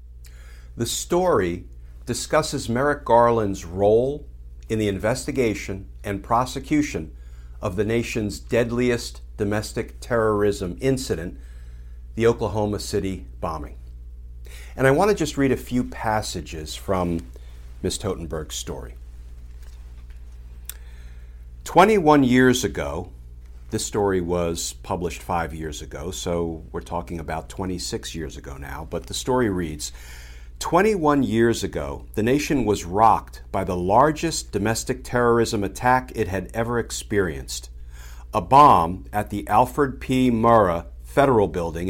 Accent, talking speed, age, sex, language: American, 115 wpm, 50-69, male, English